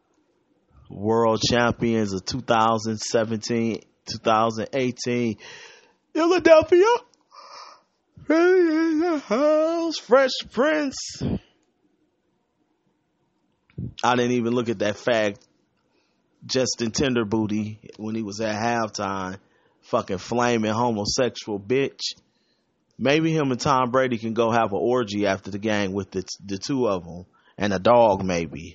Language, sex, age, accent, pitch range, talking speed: English, male, 30-49, American, 105-145 Hz, 105 wpm